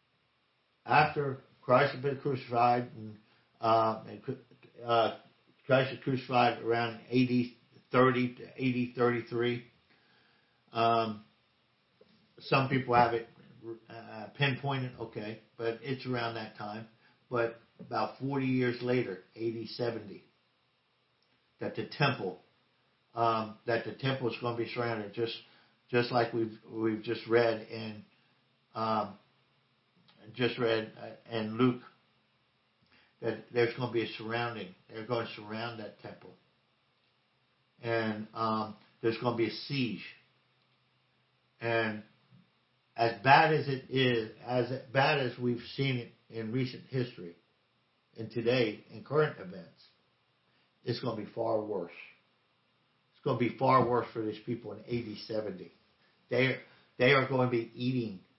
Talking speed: 130 wpm